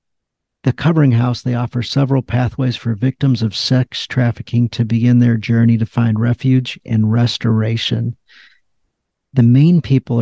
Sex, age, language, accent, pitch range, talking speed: male, 50-69, English, American, 115-130 Hz, 140 wpm